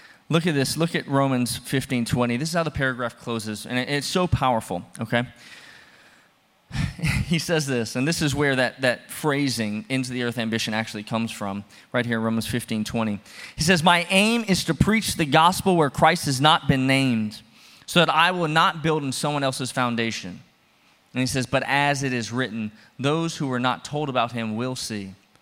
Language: English